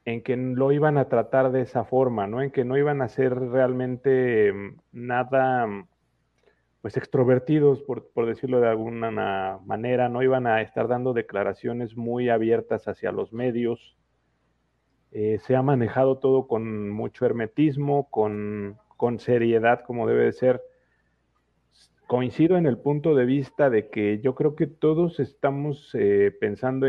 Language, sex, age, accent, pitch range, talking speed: English, male, 40-59, Mexican, 110-135 Hz, 150 wpm